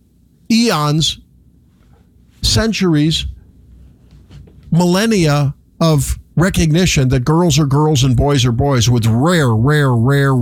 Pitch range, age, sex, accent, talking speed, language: 125-190 Hz, 50-69, male, American, 100 wpm, English